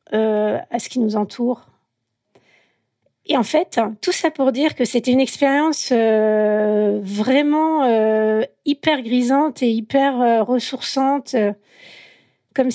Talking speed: 135 wpm